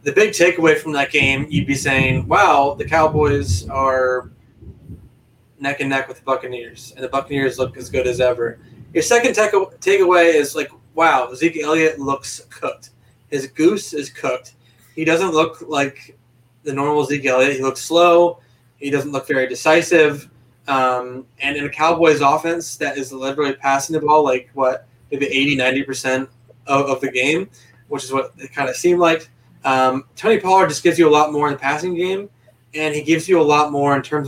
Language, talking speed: English, 190 wpm